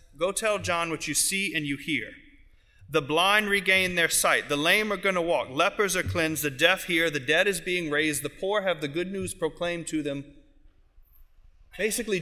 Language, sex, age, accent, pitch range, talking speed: English, male, 30-49, American, 140-195 Hz, 200 wpm